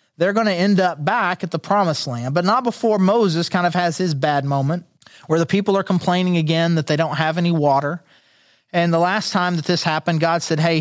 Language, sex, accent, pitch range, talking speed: English, male, American, 155-185 Hz, 235 wpm